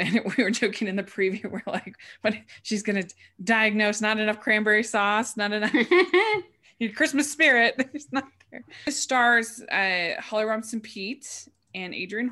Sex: female